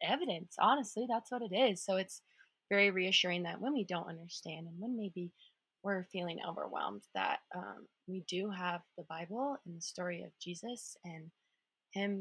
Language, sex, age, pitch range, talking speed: English, female, 20-39, 170-210 Hz, 170 wpm